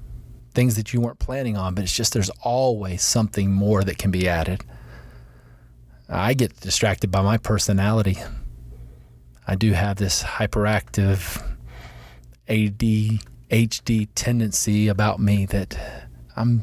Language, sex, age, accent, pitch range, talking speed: English, male, 30-49, American, 85-110 Hz, 125 wpm